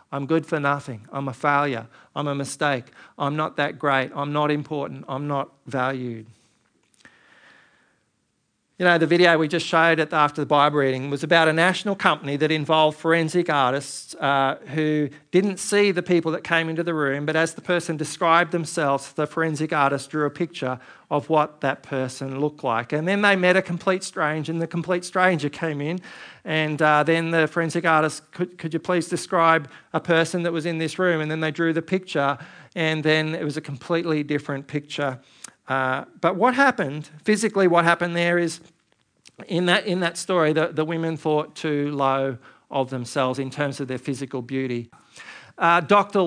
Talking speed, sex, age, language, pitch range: 185 wpm, male, 40-59, English, 140-170 Hz